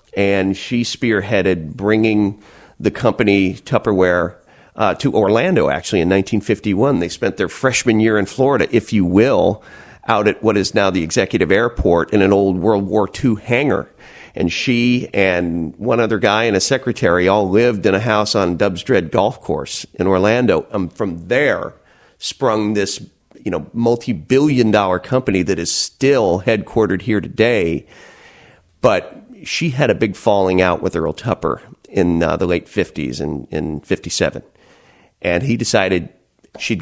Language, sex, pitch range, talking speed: English, male, 95-115 Hz, 160 wpm